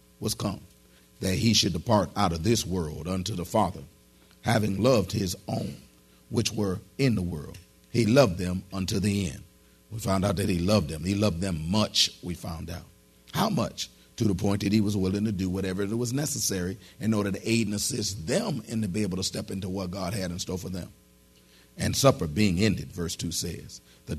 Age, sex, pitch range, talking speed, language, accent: 40-59, male, 85-110 Hz, 210 wpm, English, American